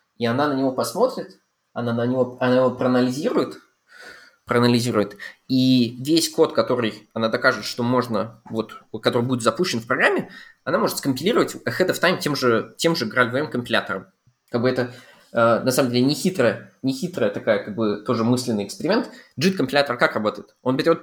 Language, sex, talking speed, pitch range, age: Russian, male, 165 wpm, 115-150 Hz, 20-39